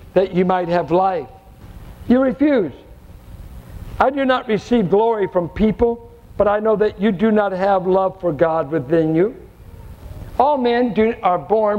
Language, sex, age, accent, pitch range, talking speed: English, male, 60-79, American, 180-235 Hz, 160 wpm